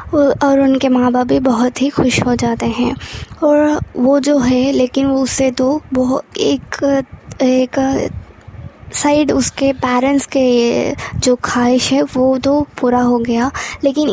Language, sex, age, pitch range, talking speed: Hindi, female, 20-39, 245-280 Hz, 150 wpm